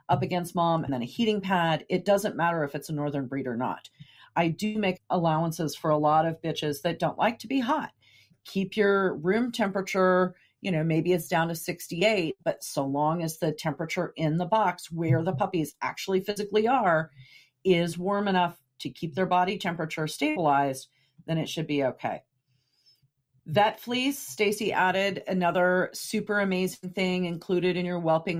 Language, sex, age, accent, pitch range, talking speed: English, female, 40-59, American, 150-195 Hz, 180 wpm